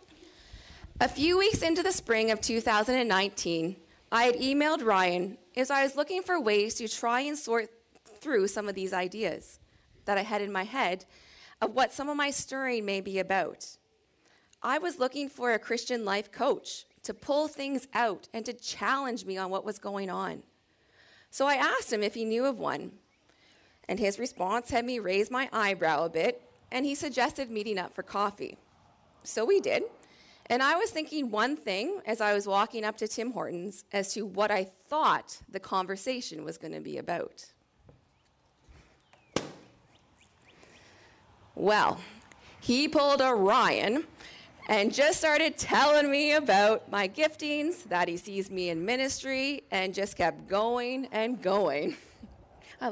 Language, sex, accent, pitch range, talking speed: English, female, American, 200-275 Hz, 165 wpm